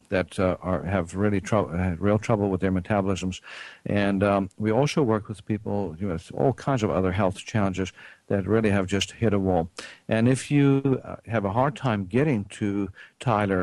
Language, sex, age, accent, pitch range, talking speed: English, male, 60-79, American, 95-115 Hz, 205 wpm